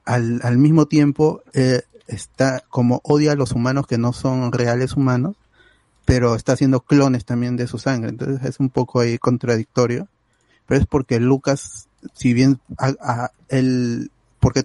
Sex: male